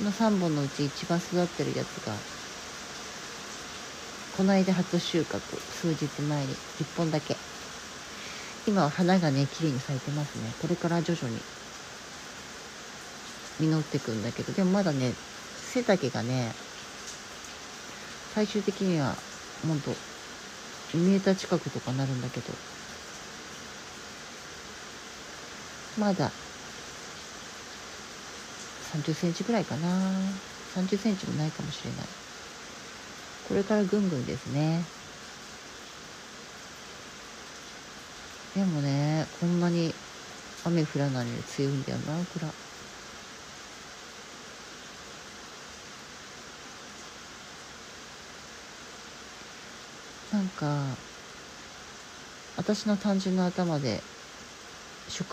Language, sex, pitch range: Japanese, female, 145-190 Hz